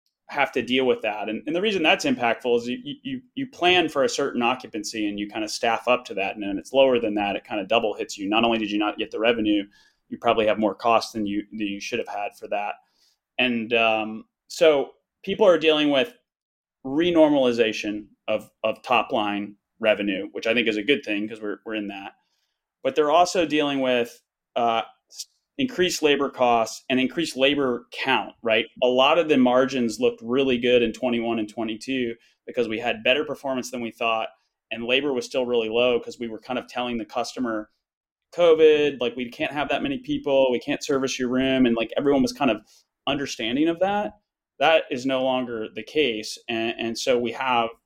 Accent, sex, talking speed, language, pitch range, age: American, male, 210 wpm, English, 115-140 Hz, 30-49